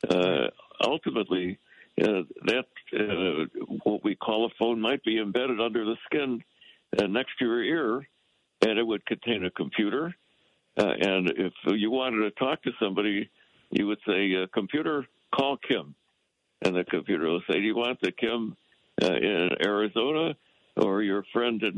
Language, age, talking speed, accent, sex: English, 60-79, 160 wpm, American, male